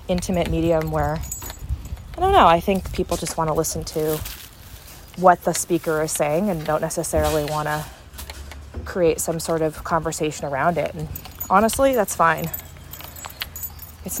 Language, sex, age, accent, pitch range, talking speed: English, female, 20-39, American, 160-215 Hz, 150 wpm